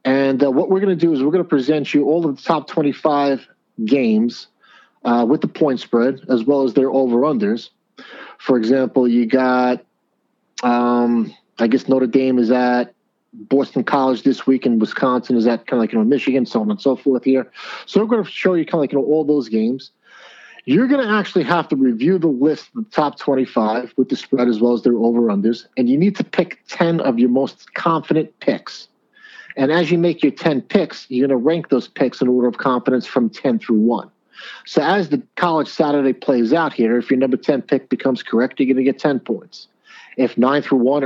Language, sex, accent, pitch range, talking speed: English, male, American, 125-170 Hz, 225 wpm